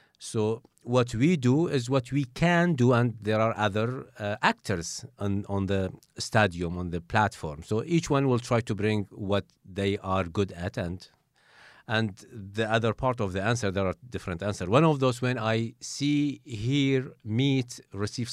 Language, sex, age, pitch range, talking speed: English, male, 50-69, 105-135 Hz, 180 wpm